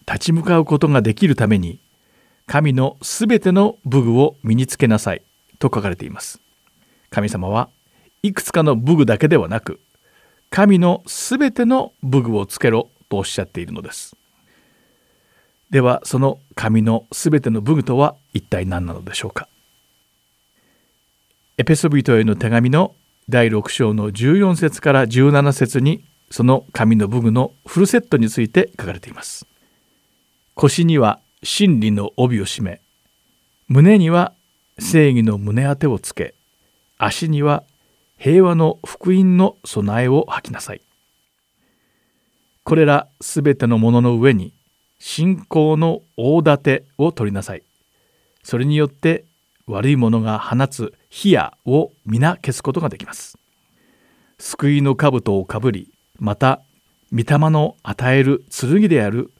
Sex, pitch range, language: male, 115-160 Hz, Japanese